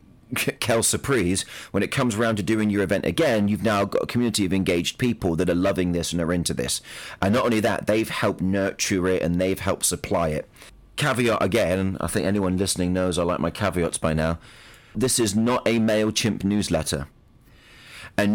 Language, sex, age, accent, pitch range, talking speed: English, male, 30-49, British, 90-115 Hz, 195 wpm